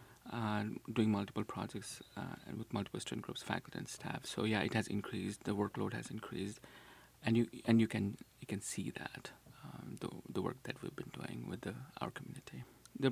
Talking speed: 195 wpm